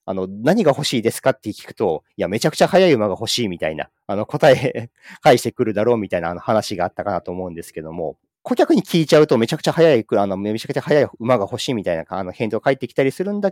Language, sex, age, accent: Japanese, male, 40-59, native